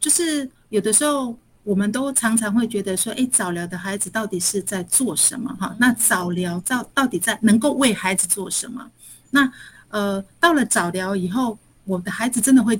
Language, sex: Chinese, female